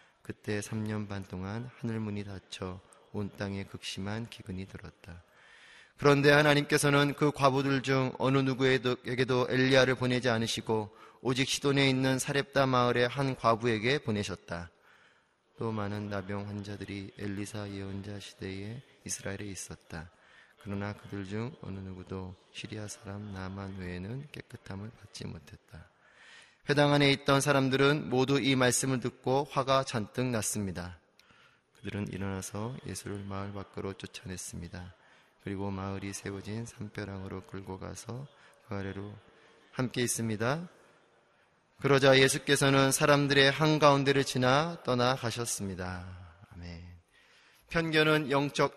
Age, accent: 30-49, native